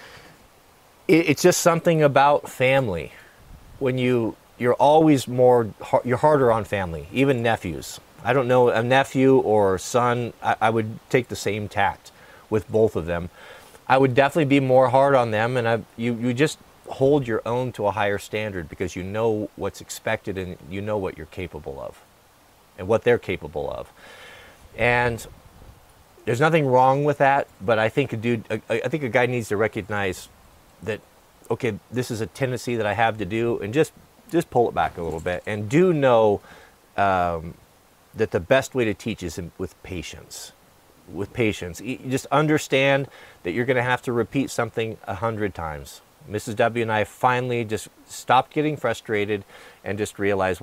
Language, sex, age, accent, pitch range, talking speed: Italian, male, 40-59, American, 105-135 Hz, 175 wpm